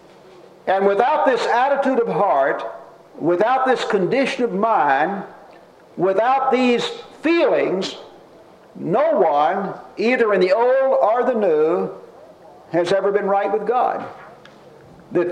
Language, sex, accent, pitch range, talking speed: English, male, American, 195-290 Hz, 120 wpm